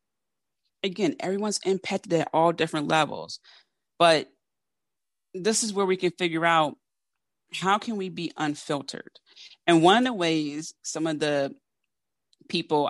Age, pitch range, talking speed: 30-49, 150-175 Hz, 135 wpm